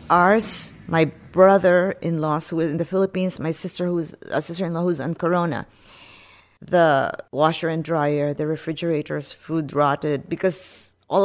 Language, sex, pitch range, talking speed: English, female, 150-180 Hz, 165 wpm